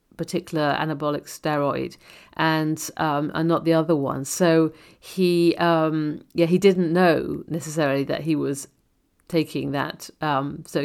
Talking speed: 140 wpm